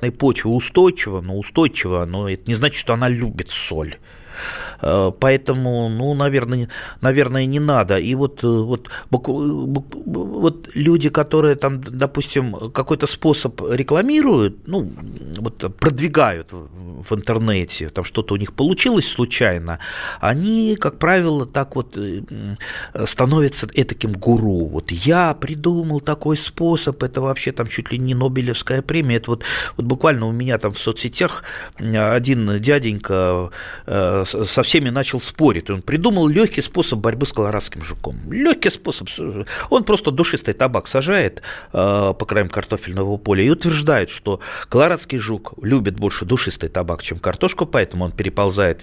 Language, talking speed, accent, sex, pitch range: Russian, 135 wpm, native, male, 100-140 Hz